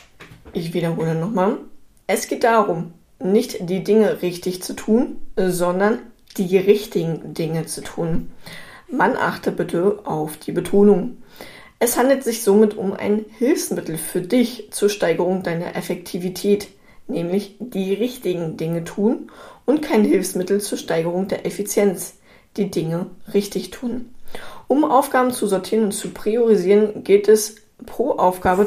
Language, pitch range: German, 180-215 Hz